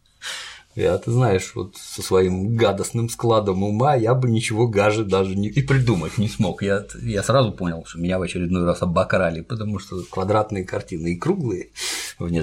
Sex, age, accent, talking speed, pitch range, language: male, 50-69, native, 170 wpm, 95-135 Hz, Russian